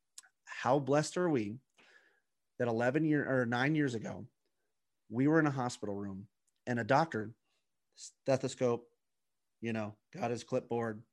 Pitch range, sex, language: 115-145 Hz, male, English